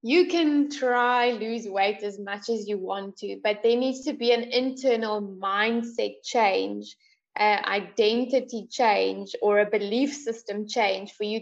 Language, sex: English, female